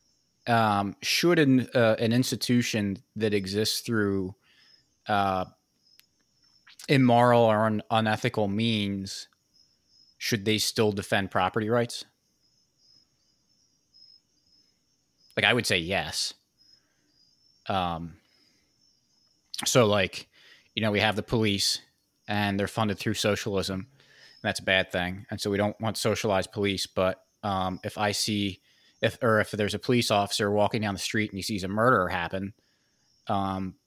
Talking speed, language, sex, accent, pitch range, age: 130 wpm, English, male, American, 100-120 Hz, 20-39